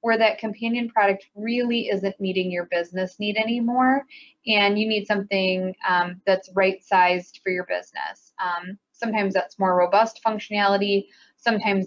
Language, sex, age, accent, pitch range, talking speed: English, female, 20-39, American, 185-220 Hz, 140 wpm